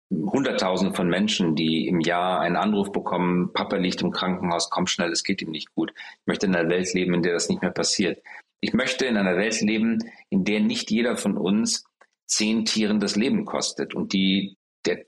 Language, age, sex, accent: German, 40-59, male, German